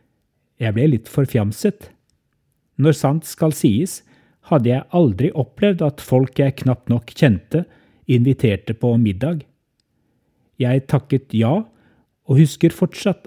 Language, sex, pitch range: English, male, 115-150 Hz